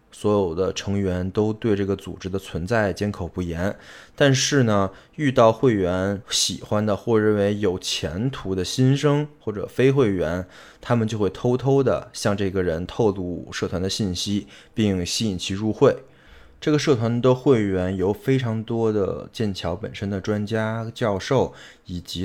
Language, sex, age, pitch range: Chinese, male, 20-39, 95-120 Hz